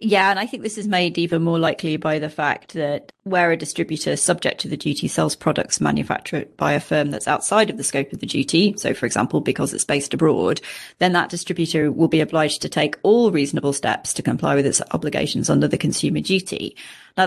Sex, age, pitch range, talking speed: female, 30-49, 150-180 Hz, 220 wpm